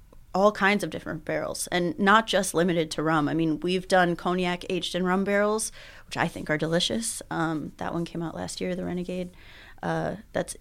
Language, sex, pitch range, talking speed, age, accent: English, female, 165-205 Hz, 205 wpm, 30-49, American